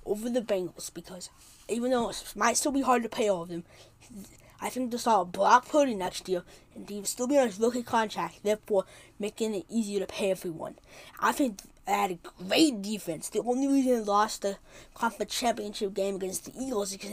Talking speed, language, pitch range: 215 wpm, English, 195-250 Hz